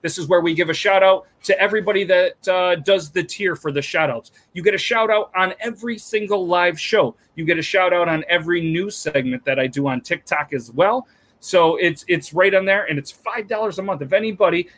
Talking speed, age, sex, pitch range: 235 wpm, 30-49, male, 150-190 Hz